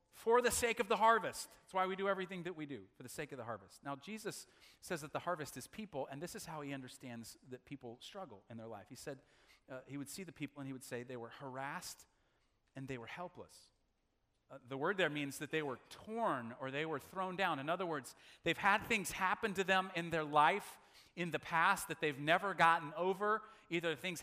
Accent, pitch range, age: American, 145-195 Hz, 40-59